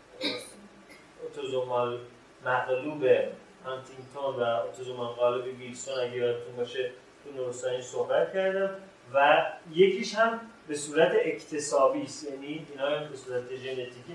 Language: Persian